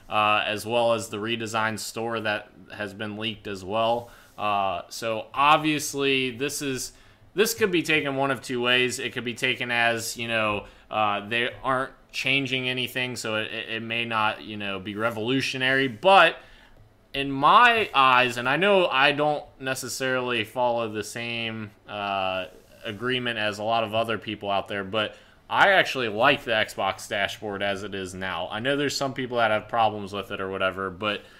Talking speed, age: 180 wpm, 20-39